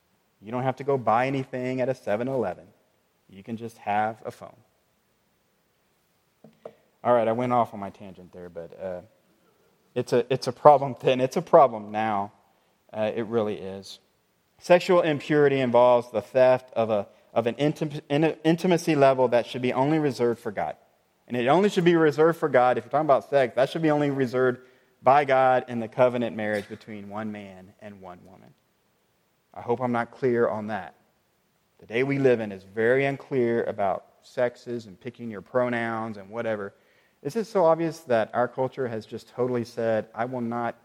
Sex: male